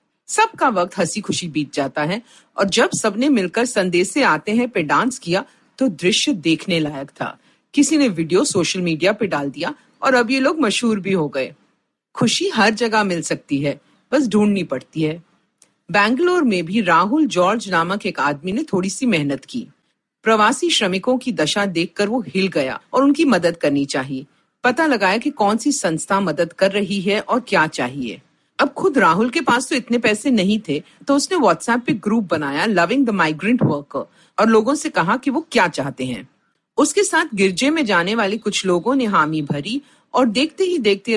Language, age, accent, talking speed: Hindi, 40-59, native, 190 wpm